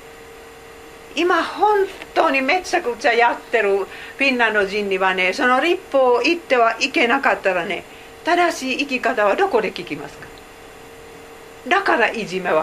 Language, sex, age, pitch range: Japanese, female, 50-69, 175-265 Hz